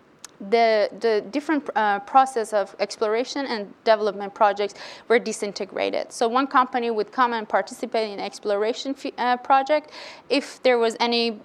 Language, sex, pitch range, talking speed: English, female, 205-250 Hz, 140 wpm